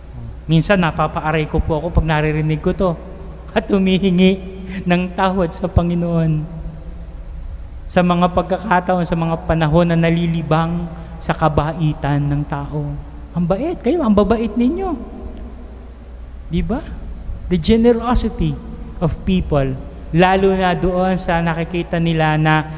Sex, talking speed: male, 120 wpm